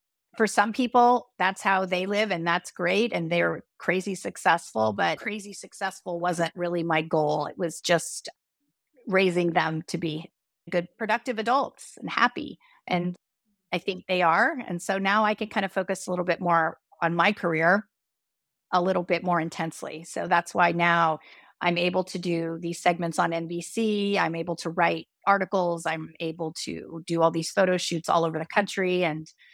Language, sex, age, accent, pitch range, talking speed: English, female, 30-49, American, 170-200 Hz, 180 wpm